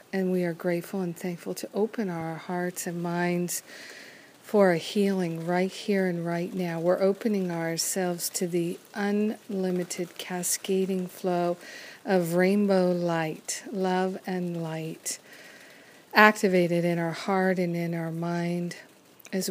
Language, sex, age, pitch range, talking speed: English, female, 50-69, 170-190 Hz, 130 wpm